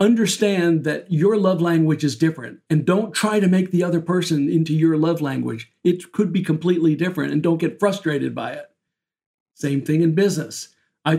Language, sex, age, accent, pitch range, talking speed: English, male, 60-79, American, 150-190 Hz, 190 wpm